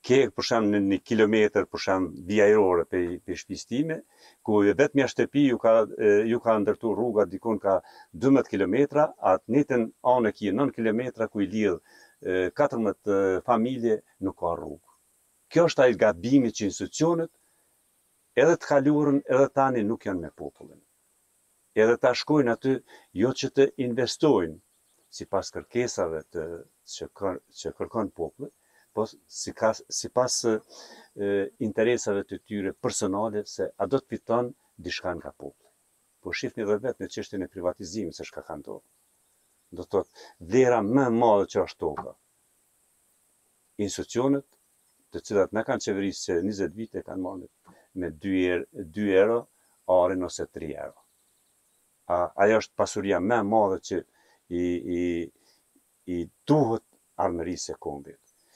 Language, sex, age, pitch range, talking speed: English, male, 60-79, 95-125 Hz, 110 wpm